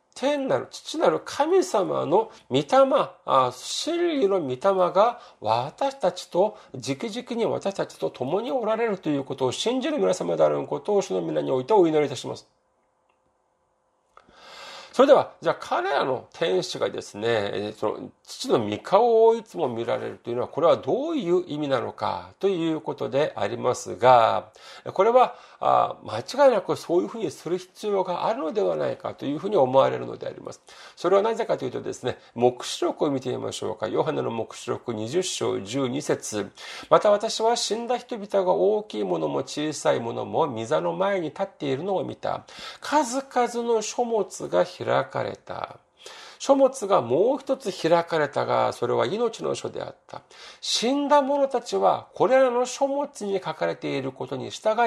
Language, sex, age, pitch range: Japanese, male, 40-59, 160-255 Hz